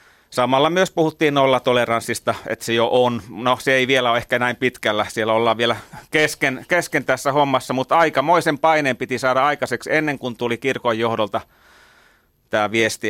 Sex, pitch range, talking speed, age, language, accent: male, 120-160 Hz, 170 wpm, 30-49, Finnish, native